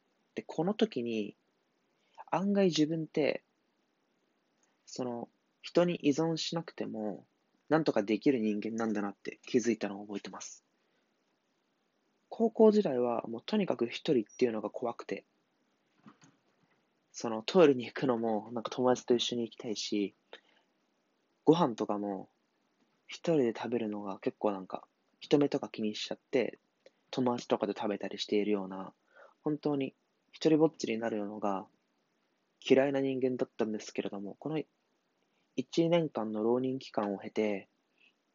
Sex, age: male, 20-39